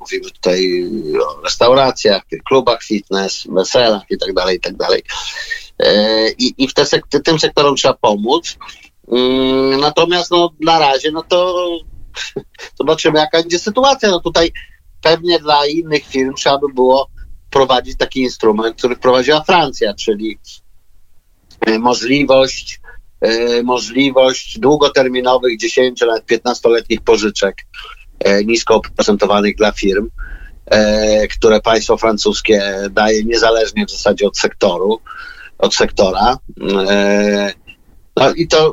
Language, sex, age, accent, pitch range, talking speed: Polish, male, 50-69, native, 110-160 Hz, 110 wpm